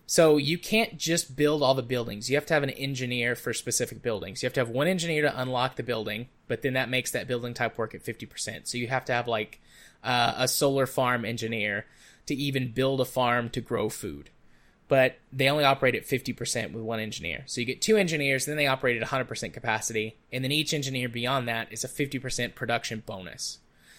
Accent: American